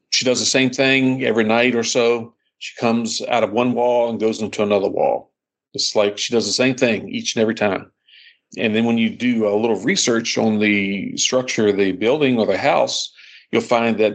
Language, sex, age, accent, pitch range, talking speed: English, male, 50-69, American, 100-120 Hz, 215 wpm